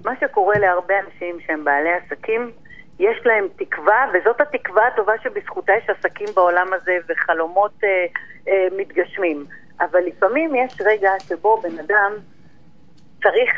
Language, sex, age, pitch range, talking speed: Hebrew, female, 40-59, 180-240 Hz, 135 wpm